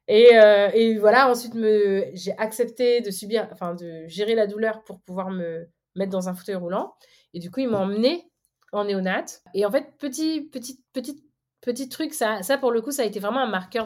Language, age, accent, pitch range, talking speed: French, 30-49, French, 195-255 Hz, 215 wpm